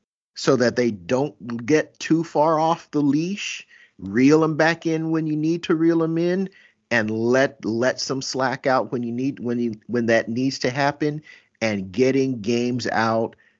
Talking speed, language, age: 180 wpm, English, 50-69